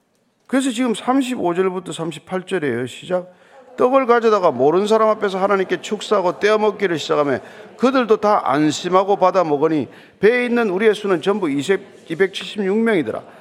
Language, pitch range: Korean, 165-235 Hz